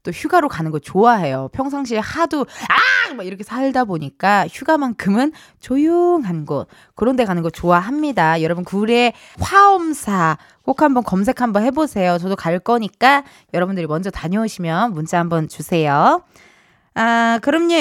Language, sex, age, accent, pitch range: Korean, female, 20-39, native, 185-290 Hz